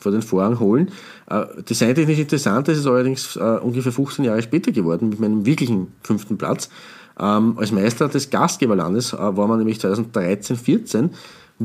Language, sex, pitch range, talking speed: German, male, 105-130 Hz, 165 wpm